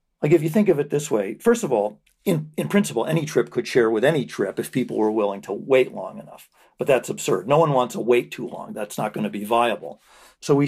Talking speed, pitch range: 265 wpm, 115-165 Hz